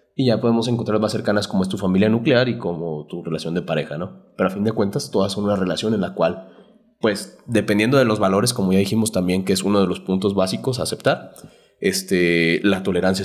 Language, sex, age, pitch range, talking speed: Spanish, male, 30-49, 100-140 Hz, 230 wpm